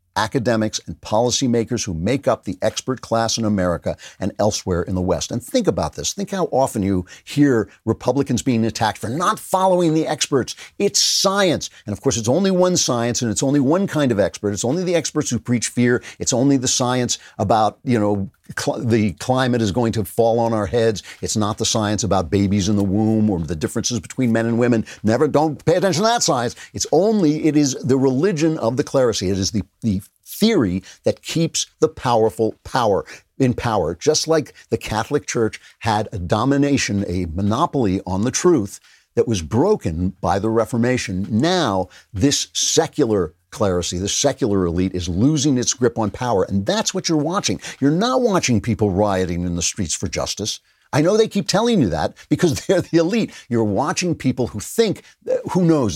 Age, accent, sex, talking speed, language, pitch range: 60-79, American, male, 195 wpm, English, 100-145 Hz